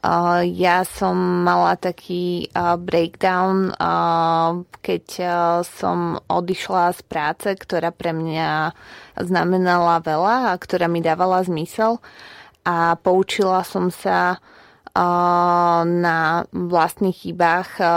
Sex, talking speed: female, 90 wpm